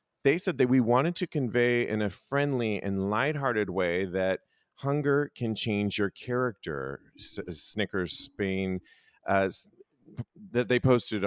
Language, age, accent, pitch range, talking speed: English, 40-59, American, 95-120 Hz, 140 wpm